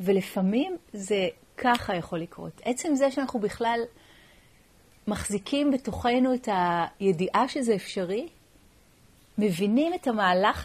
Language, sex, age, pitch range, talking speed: Hebrew, female, 40-59, 190-265 Hz, 100 wpm